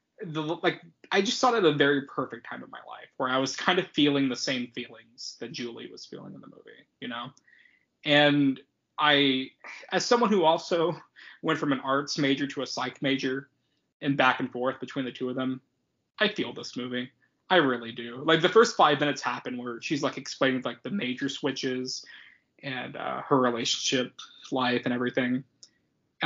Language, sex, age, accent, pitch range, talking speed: English, male, 20-39, American, 125-150 Hz, 190 wpm